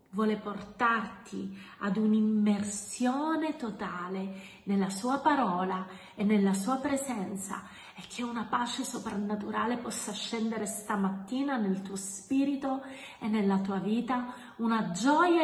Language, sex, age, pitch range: Italian, female, 30-49, 195-240 Hz